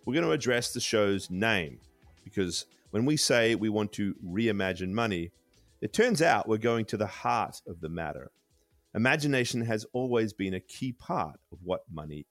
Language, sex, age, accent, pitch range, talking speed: English, male, 30-49, Australian, 95-130 Hz, 180 wpm